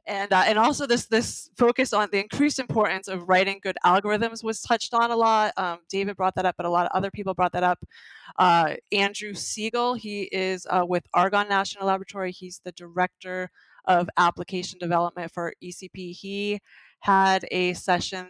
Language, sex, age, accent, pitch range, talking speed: English, female, 20-39, American, 175-200 Hz, 185 wpm